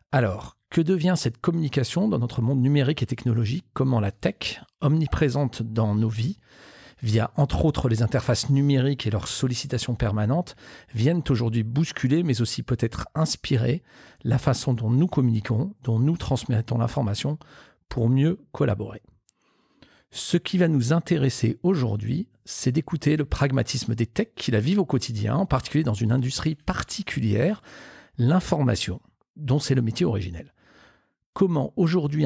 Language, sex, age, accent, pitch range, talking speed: French, male, 50-69, French, 115-150 Hz, 145 wpm